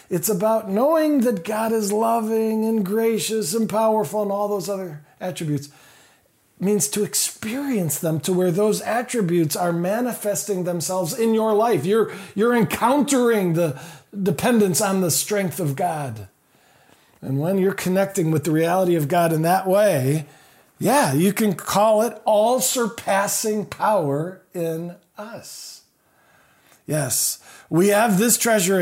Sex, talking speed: male, 140 wpm